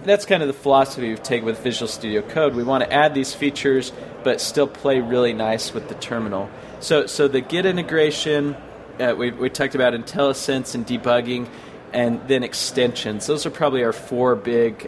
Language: English